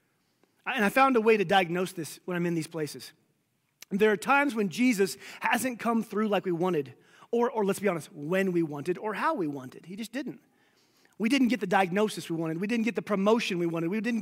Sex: male